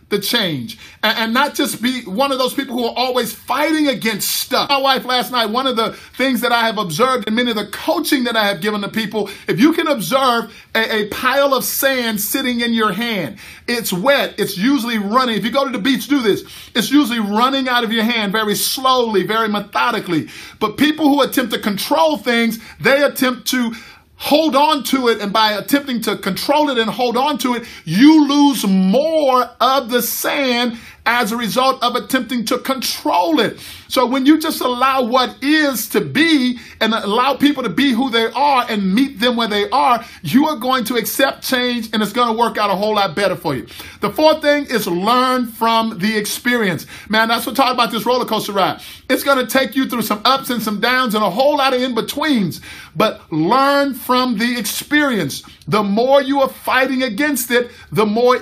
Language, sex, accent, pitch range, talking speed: English, male, American, 215-270 Hz, 210 wpm